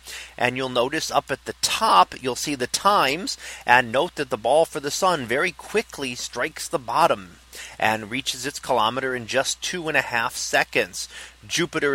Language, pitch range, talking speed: English, 120-145 Hz, 180 wpm